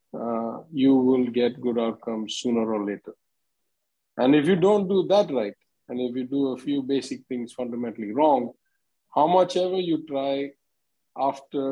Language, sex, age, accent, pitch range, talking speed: English, male, 50-69, Indian, 125-145 Hz, 165 wpm